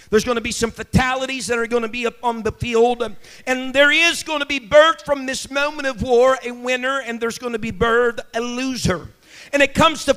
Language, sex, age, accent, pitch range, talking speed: English, male, 50-69, American, 235-285 Hz, 235 wpm